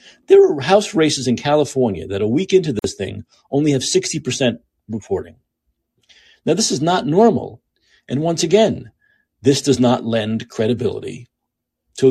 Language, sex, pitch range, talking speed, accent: English, male, 120-170 Hz, 150 wpm, American